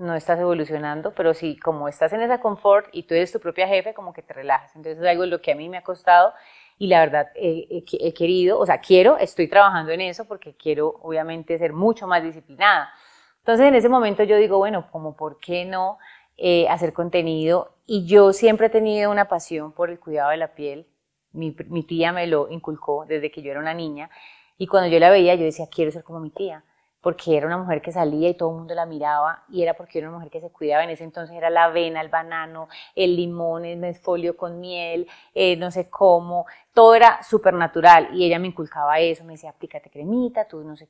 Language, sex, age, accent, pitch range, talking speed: Spanish, female, 30-49, Colombian, 160-195 Hz, 230 wpm